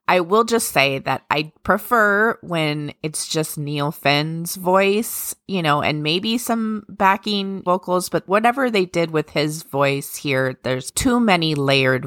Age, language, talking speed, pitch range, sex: 20-39, English, 160 wpm, 135-185 Hz, female